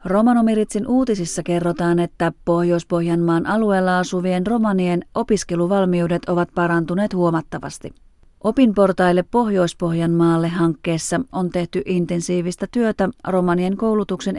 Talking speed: 85 wpm